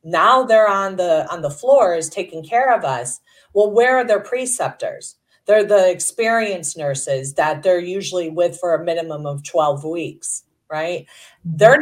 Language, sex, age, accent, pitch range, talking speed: English, female, 40-59, American, 175-225 Hz, 165 wpm